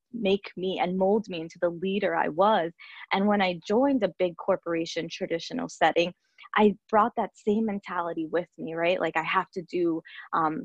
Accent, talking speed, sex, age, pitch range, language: American, 185 wpm, female, 20-39, 170-200 Hz, English